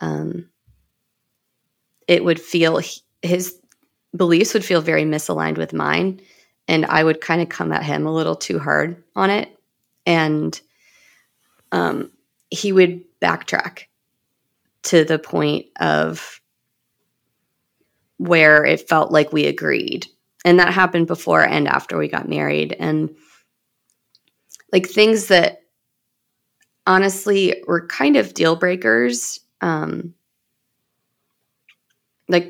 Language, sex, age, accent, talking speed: English, female, 30-49, American, 115 wpm